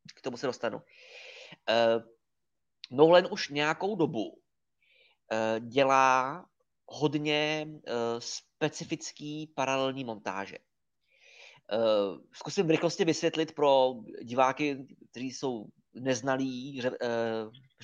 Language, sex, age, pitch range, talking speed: Czech, male, 20-39, 120-160 Hz, 85 wpm